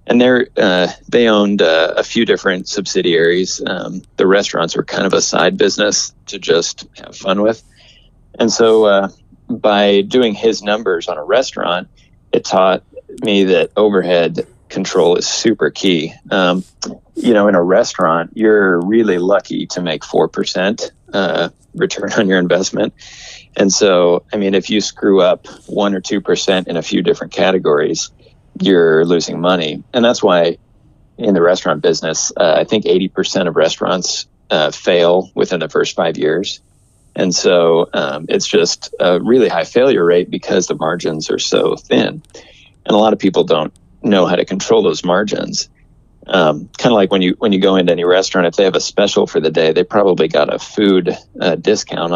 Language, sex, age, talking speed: English, male, 30-49, 175 wpm